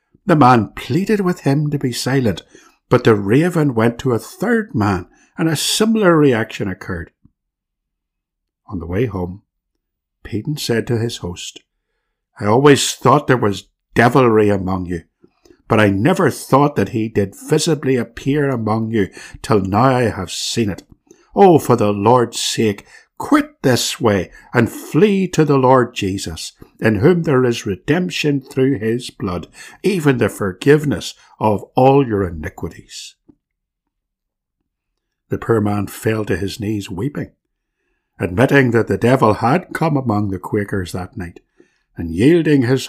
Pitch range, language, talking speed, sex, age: 100-140 Hz, English, 150 wpm, male, 60-79